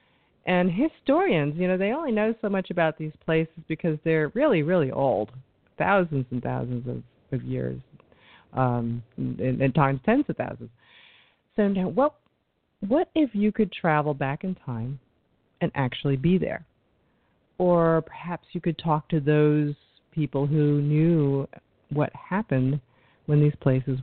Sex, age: female, 40-59